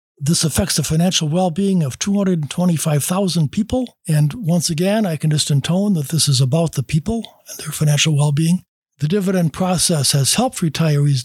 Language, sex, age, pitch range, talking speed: English, male, 60-79, 145-185 Hz, 165 wpm